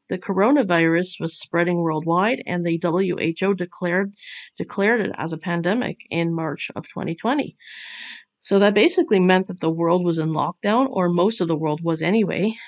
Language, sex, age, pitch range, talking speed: English, female, 50-69, 175-225 Hz, 165 wpm